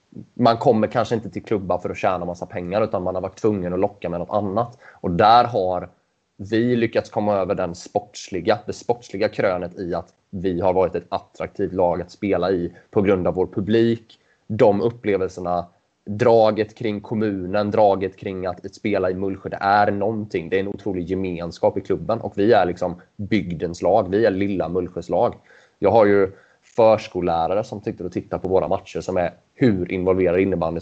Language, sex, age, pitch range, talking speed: Swedish, male, 20-39, 90-105 Hz, 190 wpm